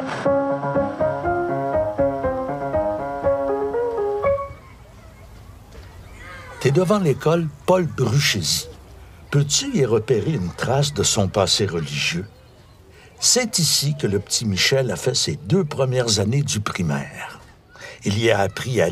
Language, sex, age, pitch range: French, male, 60-79, 110-165 Hz